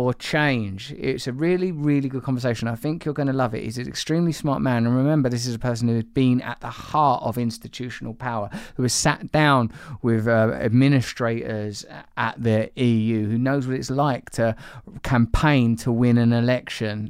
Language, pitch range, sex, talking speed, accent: English, 115-145 Hz, male, 195 wpm, British